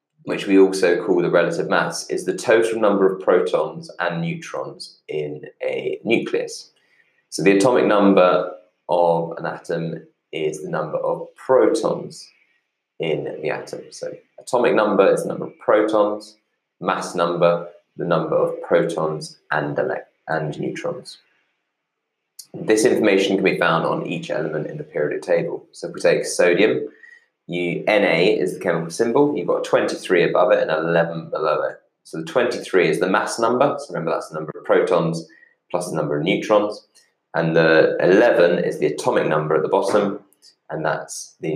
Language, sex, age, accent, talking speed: English, male, 20-39, British, 165 wpm